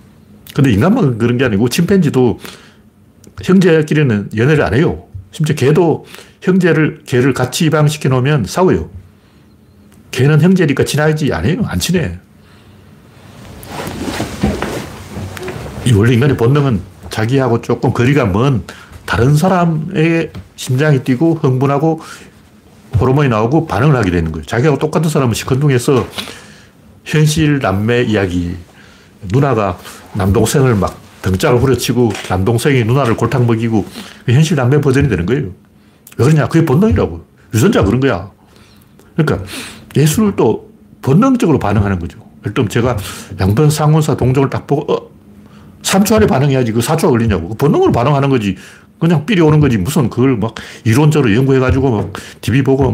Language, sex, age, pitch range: Korean, male, 60-79, 105-150 Hz